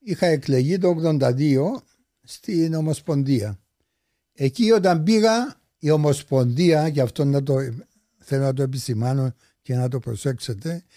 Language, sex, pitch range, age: English, male, 135-180 Hz, 60-79